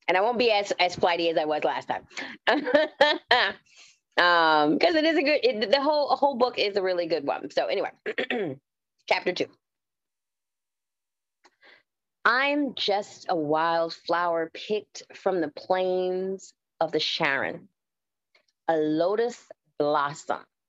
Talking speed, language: 140 wpm, English